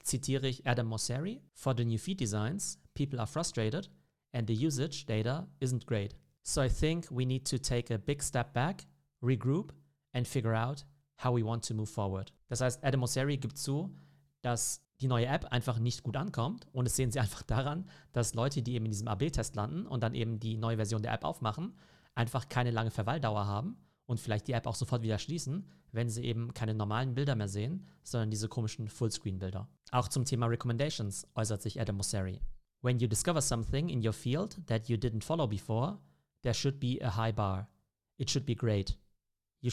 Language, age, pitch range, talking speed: German, 40-59, 110-135 Hz, 200 wpm